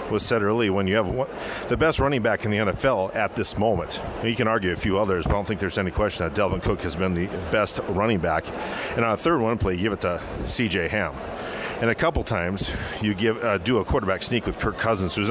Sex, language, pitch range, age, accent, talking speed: male, English, 90-110 Hz, 40-59, American, 265 wpm